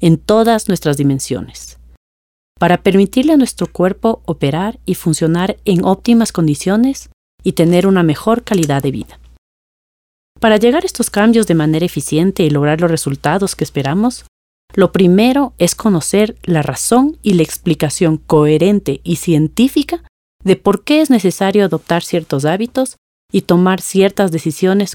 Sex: female